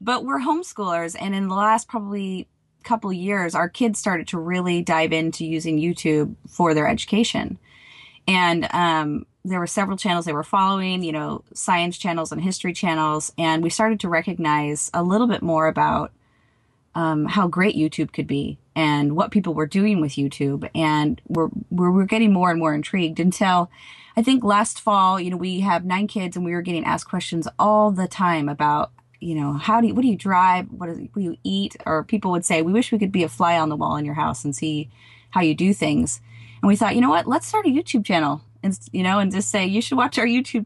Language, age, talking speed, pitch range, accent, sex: English, 30-49, 220 wpm, 155-200 Hz, American, female